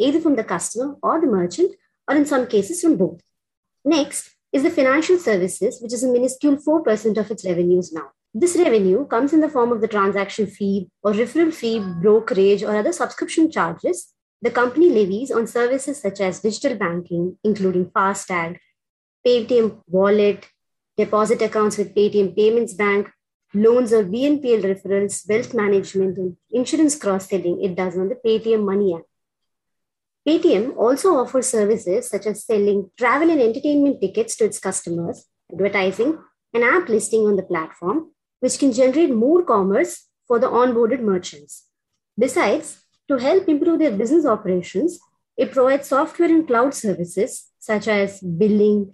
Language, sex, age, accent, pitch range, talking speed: English, male, 30-49, Indian, 195-260 Hz, 155 wpm